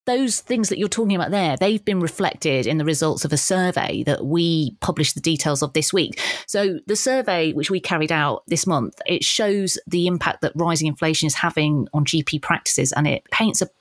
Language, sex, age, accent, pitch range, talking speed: English, female, 30-49, British, 150-180 Hz, 215 wpm